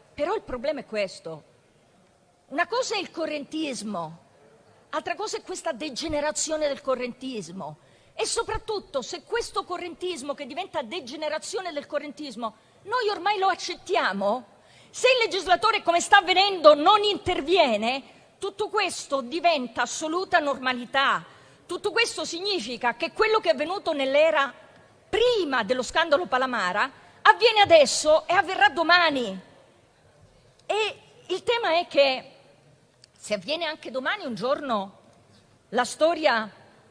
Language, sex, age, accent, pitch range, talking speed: Italian, female, 40-59, native, 255-370 Hz, 120 wpm